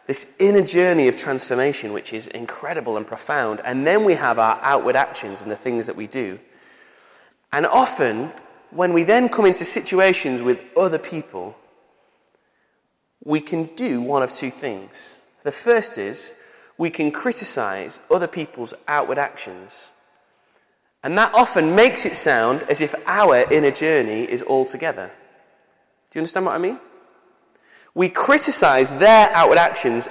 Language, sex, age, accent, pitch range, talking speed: English, male, 20-39, British, 145-235 Hz, 150 wpm